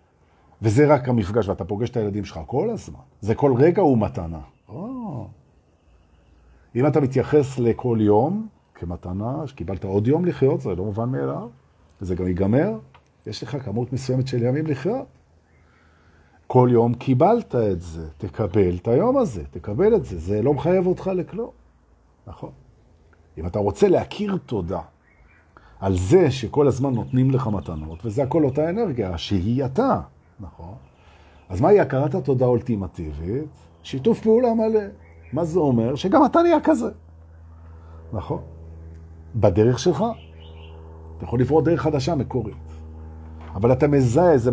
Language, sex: Hebrew, male